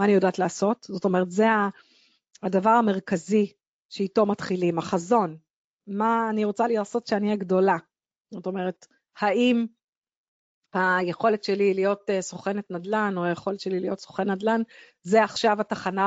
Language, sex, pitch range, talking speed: Hebrew, female, 185-230 Hz, 135 wpm